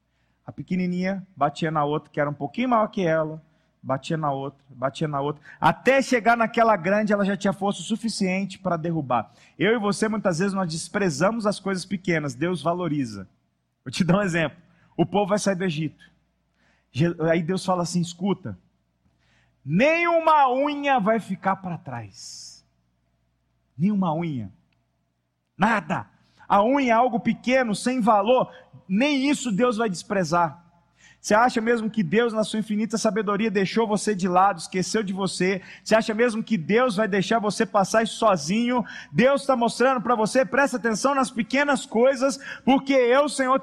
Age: 40-59